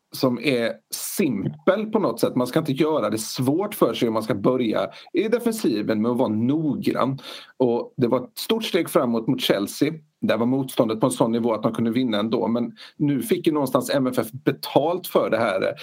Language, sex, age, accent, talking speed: Swedish, male, 40-59, native, 210 wpm